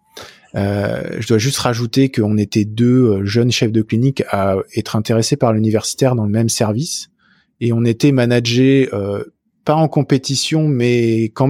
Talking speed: 165 wpm